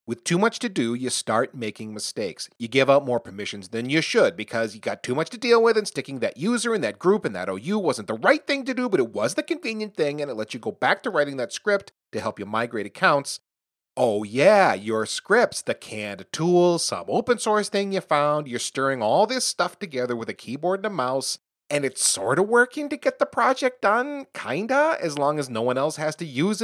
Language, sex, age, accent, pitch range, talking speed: English, male, 30-49, American, 115-190 Hz, 240 wpm